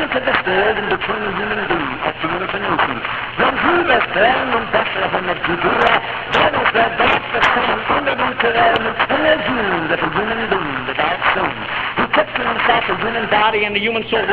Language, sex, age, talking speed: English, male, 50-69, 135 wpm